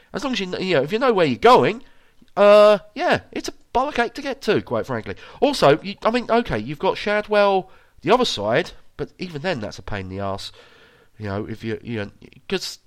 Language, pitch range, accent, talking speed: English, 125-190 Hz, British, 230 wpm